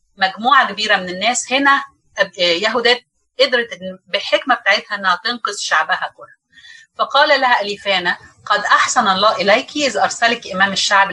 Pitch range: 200-265 Hz